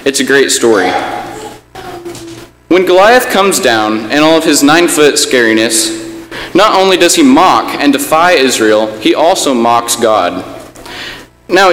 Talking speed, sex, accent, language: 140 wpm, male, American, English